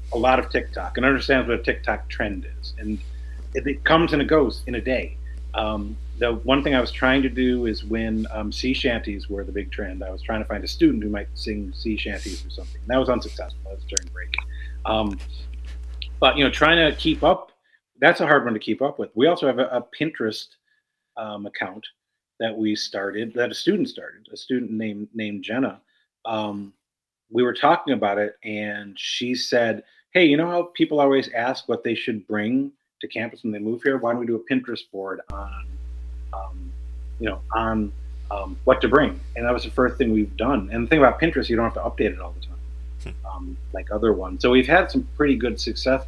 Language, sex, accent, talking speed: English, male, American, 225 wpm